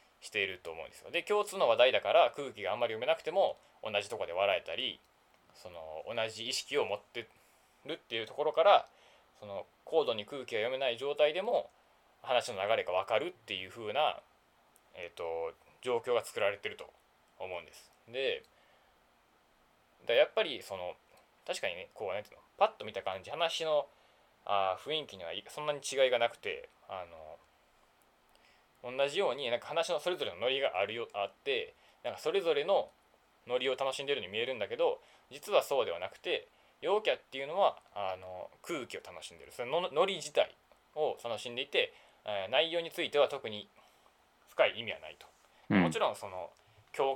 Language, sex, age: Japanese, male, 20-39